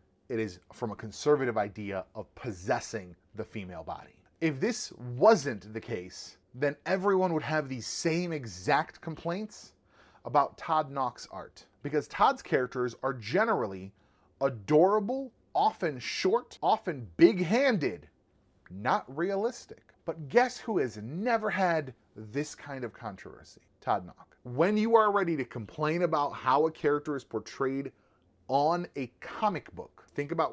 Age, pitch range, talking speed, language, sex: 30-49, 110-165 Hz, 140 wpm, English, male